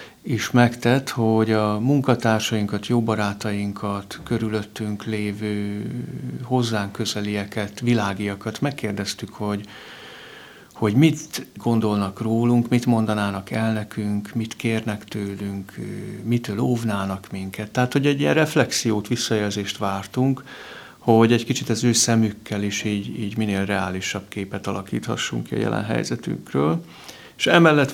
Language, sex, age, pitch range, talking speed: Hungarian, male, 60-79, 105-125 Hz, 115 wpm